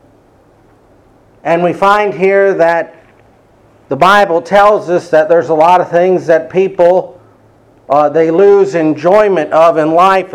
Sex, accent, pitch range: male, American, 155-195 Hz